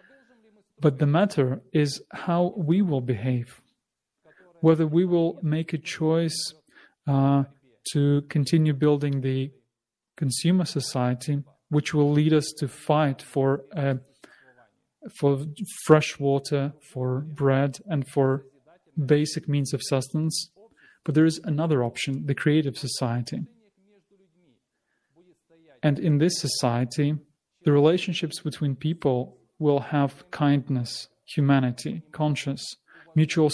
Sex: male